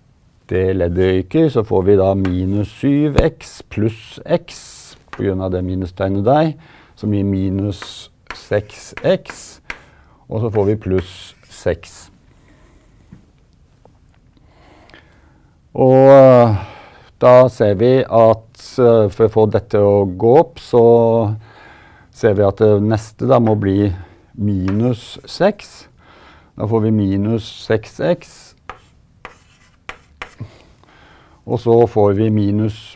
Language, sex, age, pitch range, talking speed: Croatian, male, 50-69, 100-120 Hz, 105 wpm